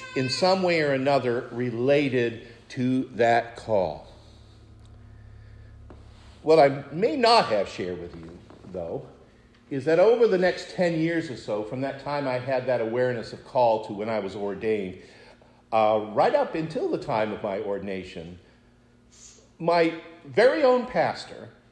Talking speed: 150 wpm